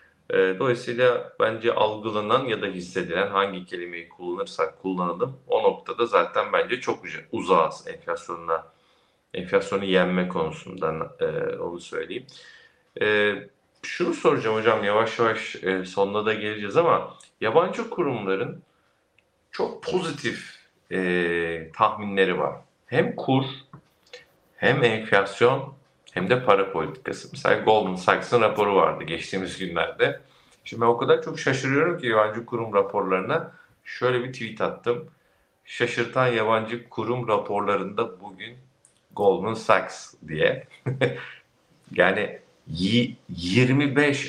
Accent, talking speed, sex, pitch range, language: native, 105 wpm, male, 95-140 Hz, Turkish